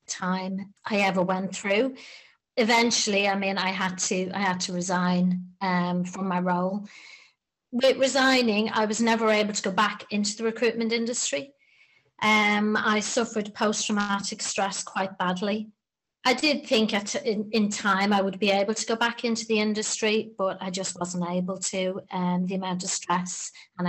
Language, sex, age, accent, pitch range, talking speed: English, female, 30-49, British, 185-220 Hz, 170 wpm